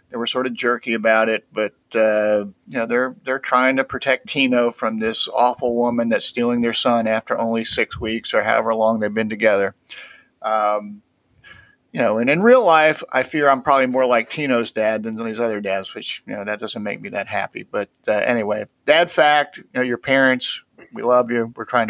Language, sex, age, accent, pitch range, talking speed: English, male, 50-69, American, 110-135 Hz, 210 wpm